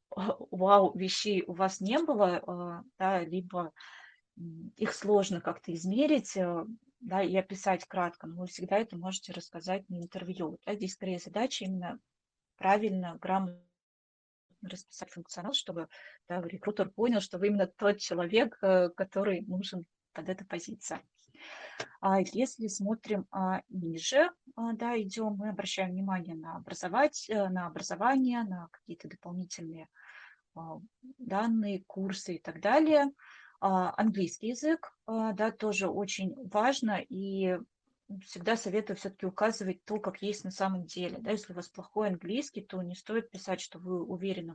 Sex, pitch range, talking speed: female, 180-215 Hz, 120 wpm